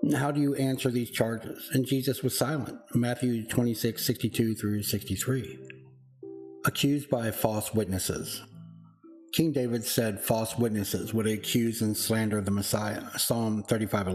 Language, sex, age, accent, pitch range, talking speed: English, male, 60-79, American, 110-135 Hz, 125 wpm